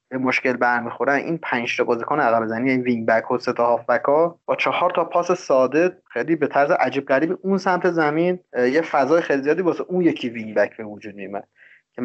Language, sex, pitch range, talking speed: Persian, male, 125-155 Hz, 190 wpm